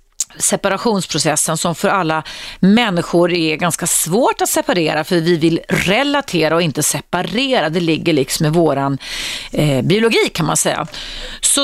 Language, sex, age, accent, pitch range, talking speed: Swedish, female, 30-49, native, 160-205 Hz, 145 wpm